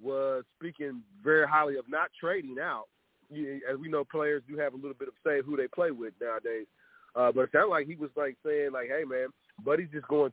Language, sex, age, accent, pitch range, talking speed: English, male, 30-49, American, 135-165 Hz, 230 wpm